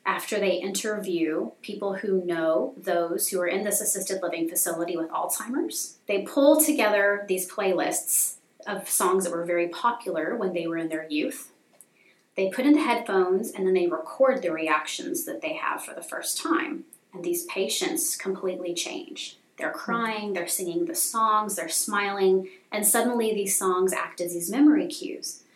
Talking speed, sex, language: 170 wpm, female, English